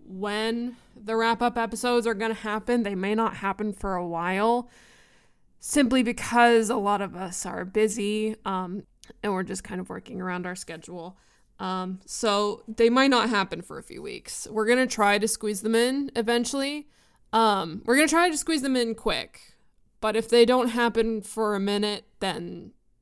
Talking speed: 175 wpm